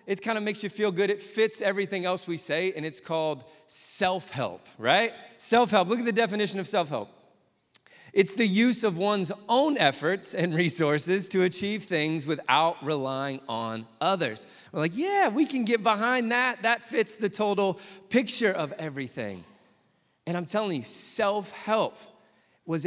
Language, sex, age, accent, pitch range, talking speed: English, male, 30-49, American, 155-210 Hz, 165 wpm